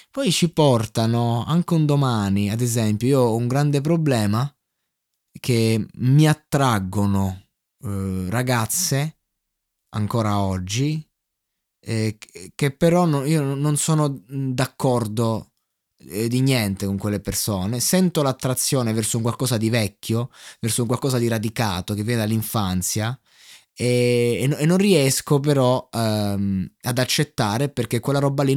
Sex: male